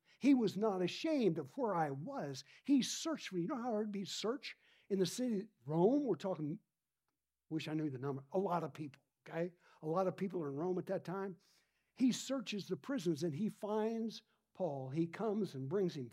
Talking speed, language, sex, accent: 215 wpm, English, male, American